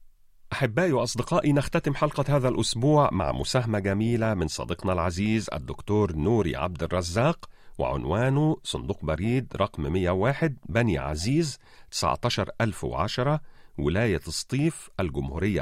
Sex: male